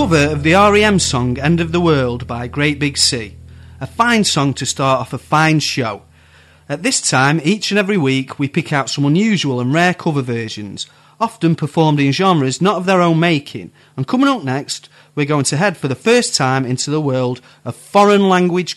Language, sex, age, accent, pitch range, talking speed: English, male, 30-49, British, 130-170 Hz, 210 wpm